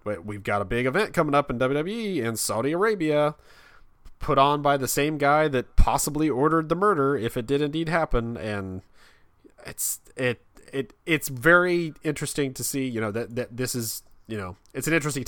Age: 30-49